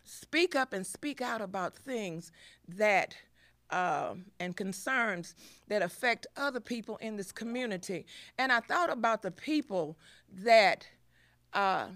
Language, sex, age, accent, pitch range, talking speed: English, female, 50-69, American, 195-265 Hz, 130 wpm